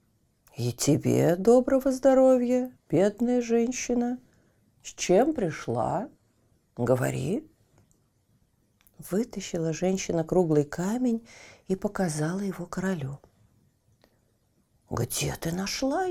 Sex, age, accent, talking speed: female, 40-59, native, 80 wpm